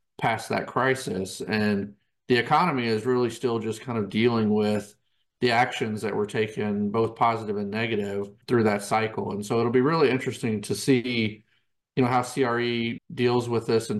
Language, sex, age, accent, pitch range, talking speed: English, male, 40-59, American, 110-130 Hz, 180 wpm